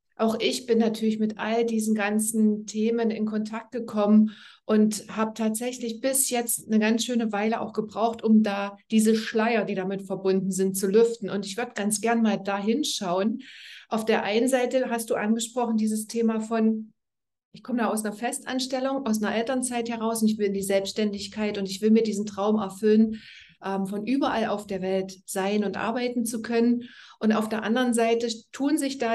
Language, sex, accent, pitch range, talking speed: German, female, German, 205-230 Hz, 190 wpm